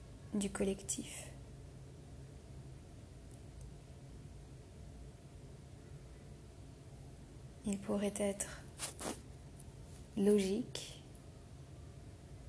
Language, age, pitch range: French, 30-49, 195-215 Hz